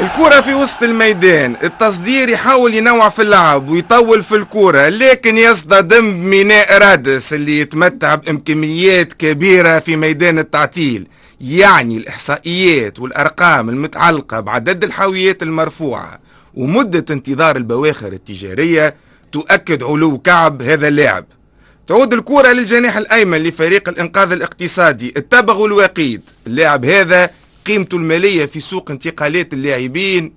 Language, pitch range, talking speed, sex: Arabic, 145-190 Hz, 110 wpm, male